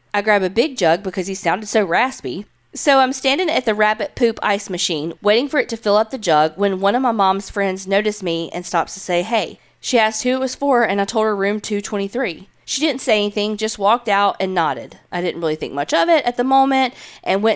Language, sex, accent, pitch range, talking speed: English, female, American, 185-245 Hz, 250 wpm